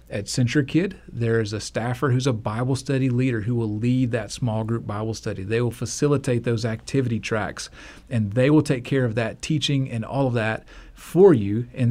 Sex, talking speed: male, 205 wpm